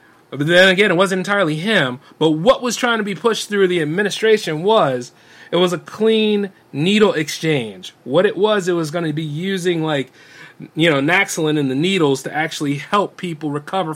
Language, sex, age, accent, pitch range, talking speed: English, male, 30-49, American, 160-205 Hz, 195 wpm